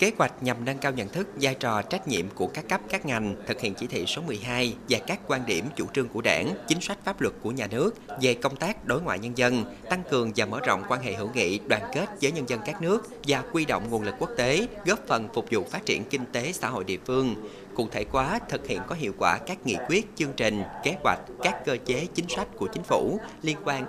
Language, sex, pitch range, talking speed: Vietnamese, male, 115-145 Hz, 260 wpm